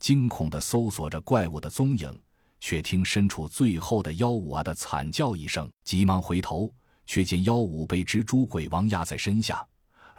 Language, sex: Chinese, male